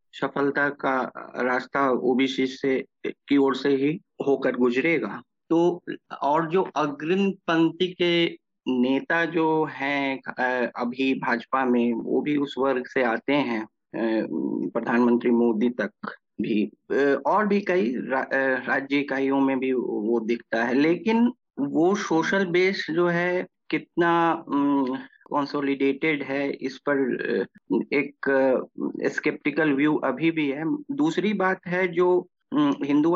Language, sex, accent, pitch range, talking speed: Hindi, male, native, 130-170 Hz, 120 wpm